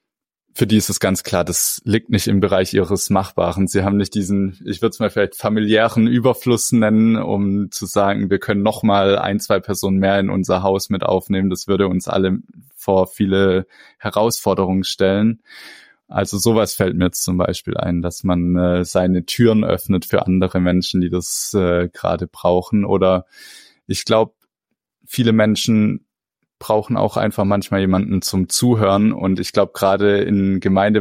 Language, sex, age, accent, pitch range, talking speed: German, male, 20-39, German, 95-110 Hz, 170 wpm